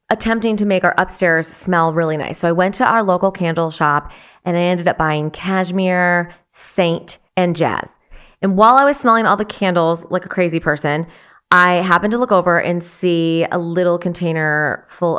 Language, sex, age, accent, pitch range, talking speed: English, female, 30-49, American, 165-185 Hz, 190 wpm